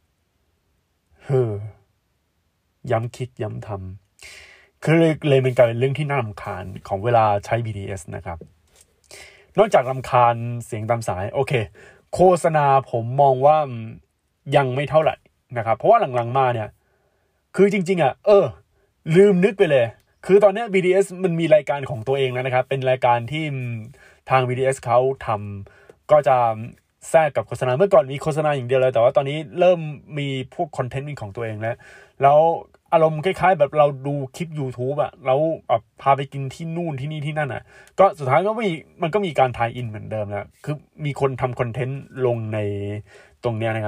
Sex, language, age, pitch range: male, Thai, 20-39, 115-155 Hz